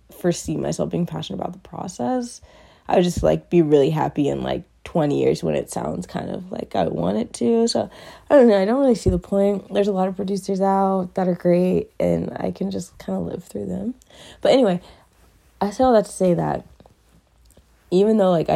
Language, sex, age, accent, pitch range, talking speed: English, female, 20-39, American, 150-205 Hz, 220 wpm